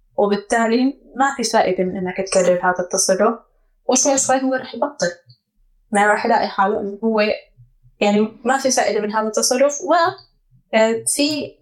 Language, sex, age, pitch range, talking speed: Arabic, female, 10-29, 190-235 Hz, 150 wpm